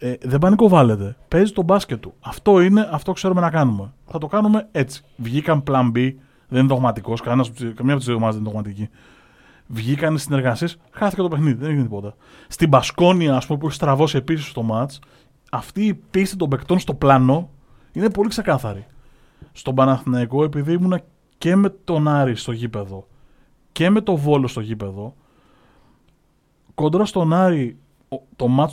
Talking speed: 165 wpm